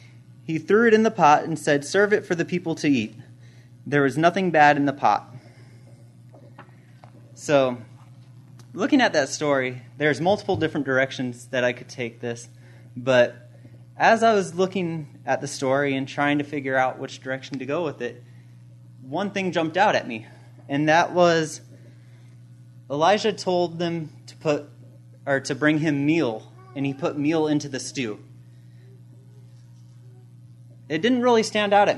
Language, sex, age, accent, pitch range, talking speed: English, male, 20-39, American, 120-150 Hz, 160 wpm